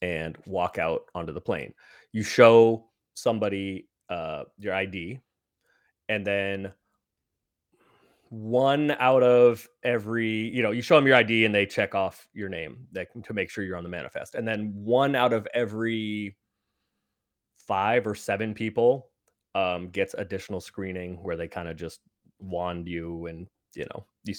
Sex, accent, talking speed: male, American, 155 wpm